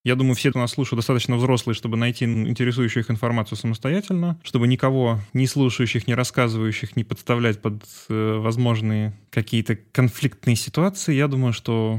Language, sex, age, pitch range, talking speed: Russian, male, 20-39, 110-130 Hz, 155 wpm